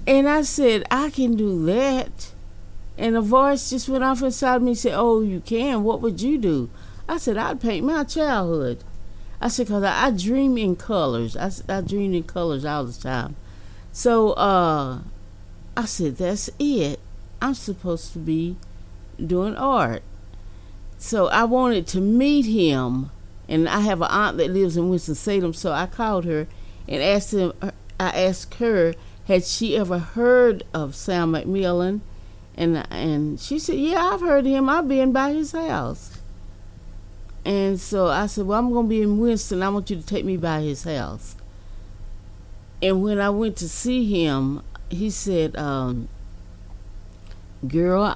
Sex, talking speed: female, 165 wpm